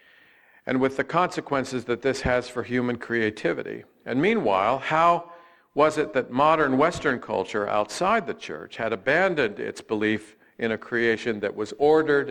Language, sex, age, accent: English, male, 50-69, American